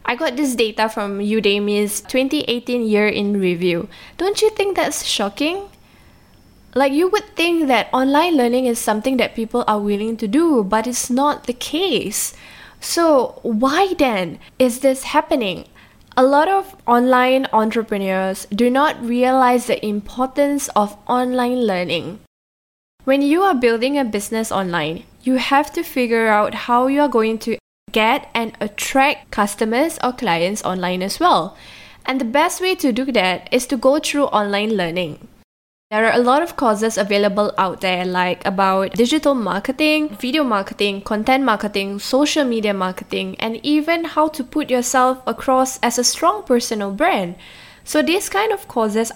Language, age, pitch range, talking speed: English, 10-29, 210-280 Hz, 160 wpm